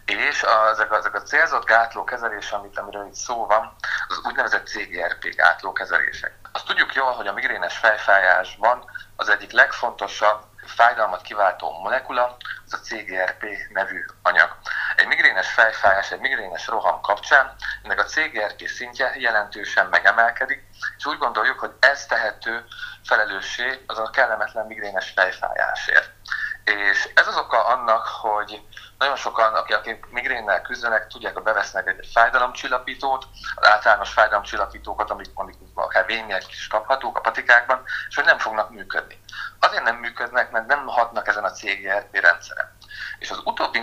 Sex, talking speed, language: male, 140 wpm, Hungarian